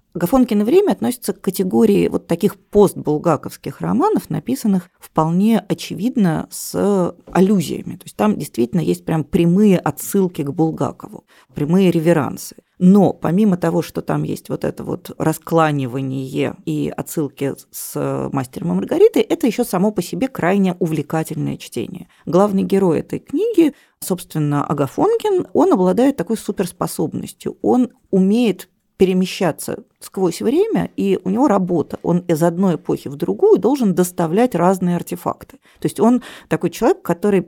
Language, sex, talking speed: Russian, female, 135 wpm